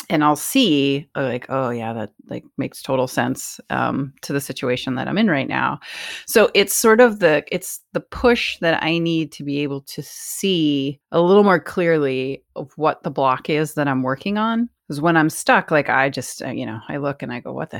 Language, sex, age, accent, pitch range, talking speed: English, female, 30-49, American, 140-200 Hz, 215 wpm